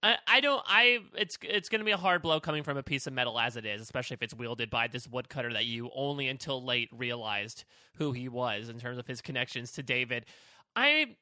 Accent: American